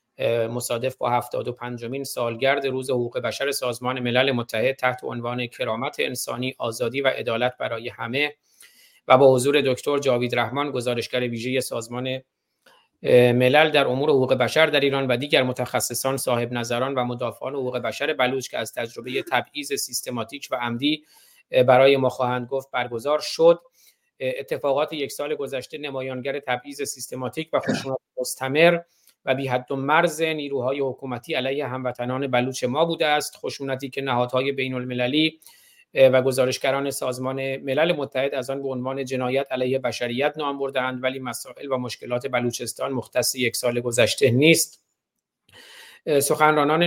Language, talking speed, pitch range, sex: Persian, 140 wpm, 125-140 Hz, male